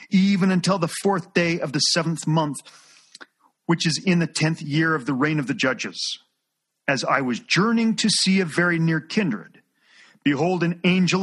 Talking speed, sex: 180 wpm, male